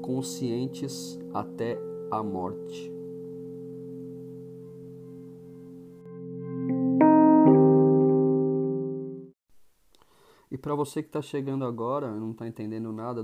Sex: male